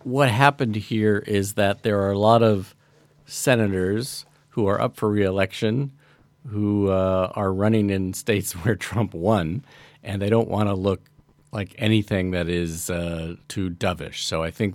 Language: English